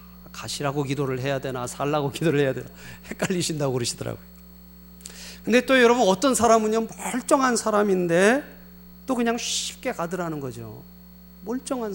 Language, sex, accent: Korean, male, native